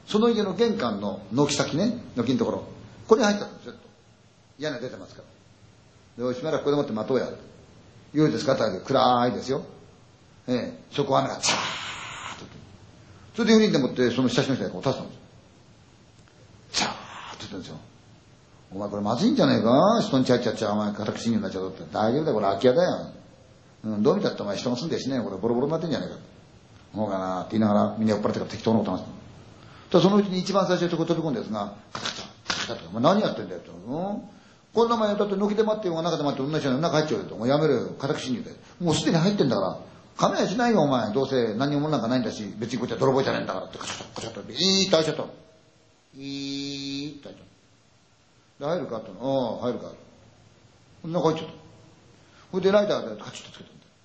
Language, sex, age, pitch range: Chinese, male, 40-59, 110-165 Hz